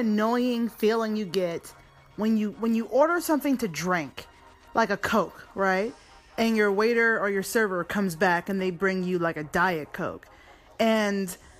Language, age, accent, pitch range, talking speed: English, 30-49, American, 195-300 Hz, 170 wpm